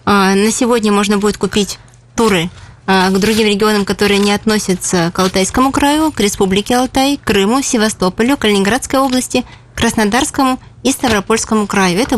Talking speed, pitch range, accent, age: 140 wpm, 200-250 Hz, native, 20-39